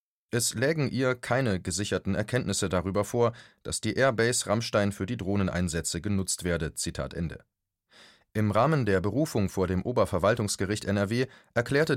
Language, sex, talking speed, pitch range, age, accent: German, male, 140 wpm, 95-120 Hz, 30-49, German